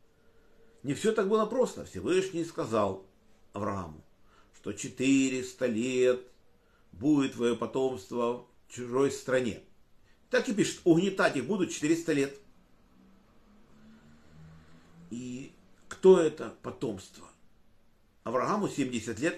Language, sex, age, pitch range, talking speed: Russian, male, 50-69, 100-150 Hz, 100 wpm